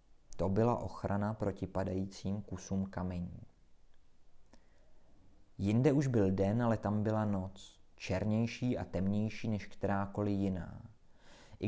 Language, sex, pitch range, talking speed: Czech, male, 95-120 Hz, 115 wpm